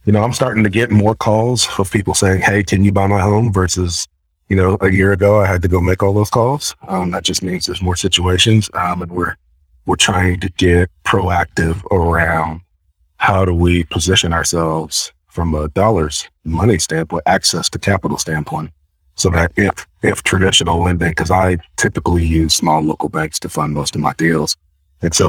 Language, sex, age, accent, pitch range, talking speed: English, male, 40-59, American, 80-95 Hz, 195 wpm